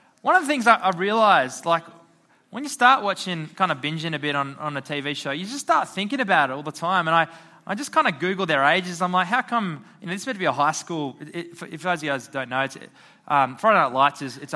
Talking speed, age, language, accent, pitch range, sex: 285 wpm, 20-39, English, Australian, 135-190 Hz, male